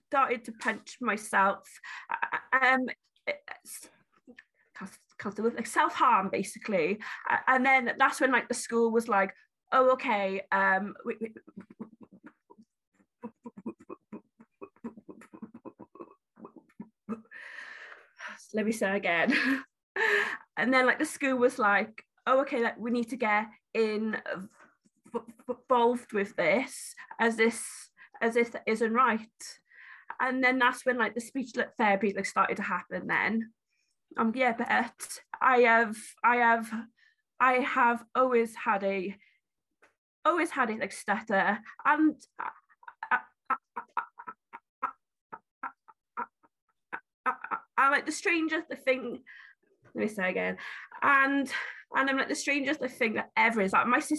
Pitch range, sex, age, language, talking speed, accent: 225-280 Hz, female, 20-39, English, 110 wpm, British